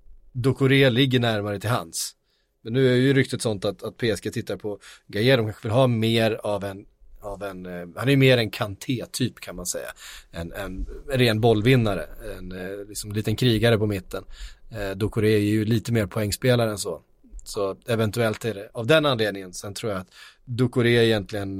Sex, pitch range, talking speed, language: male, 110-135 Hz, 185 wpm, Swedish